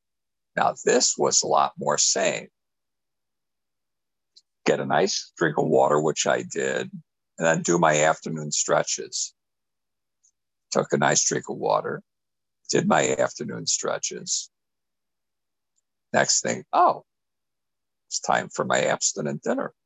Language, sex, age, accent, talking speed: English, male, 50-69, American, 125 wpm